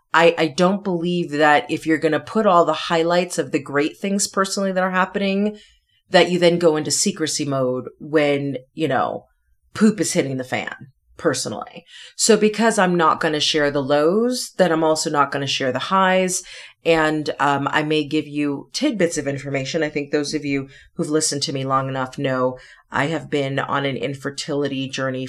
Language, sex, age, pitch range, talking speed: English, female, 30-49, 140-175 Hz, 195 wpm